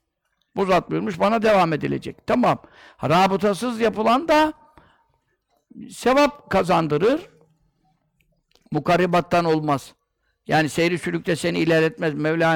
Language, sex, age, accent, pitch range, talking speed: Turkish, male, 60-79, native, 155-195 Hz, 95 wpm